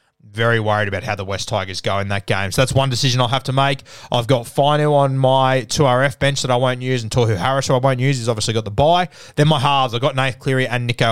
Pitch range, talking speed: 110-135 Hz, 275 wpm